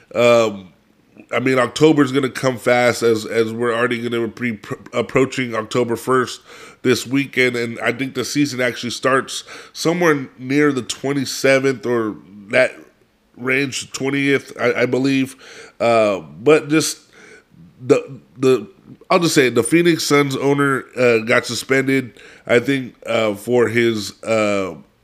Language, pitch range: English, 120-140 Hz